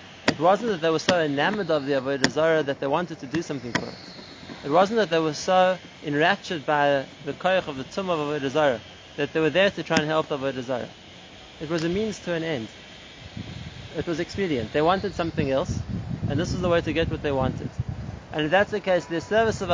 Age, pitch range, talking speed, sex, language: 30-49, 145-180 Hz, 230 wpm, male, English